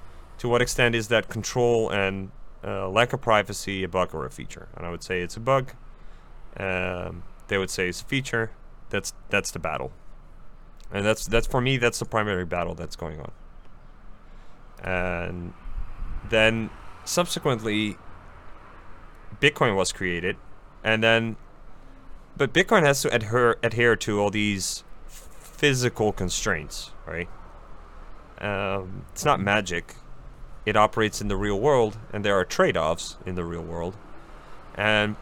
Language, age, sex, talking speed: English, 30-49, male, 145 wpm